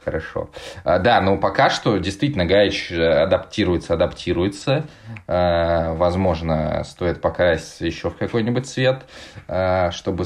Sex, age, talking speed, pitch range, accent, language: male, 20-39, 105 wpm, 80-100 Hz, native, Russian